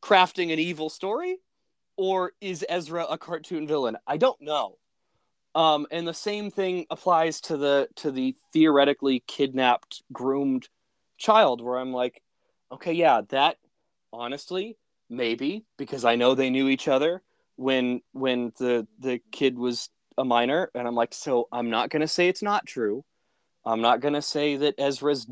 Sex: male